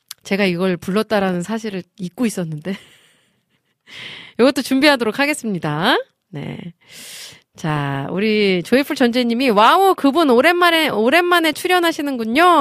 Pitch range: 175-275 Hz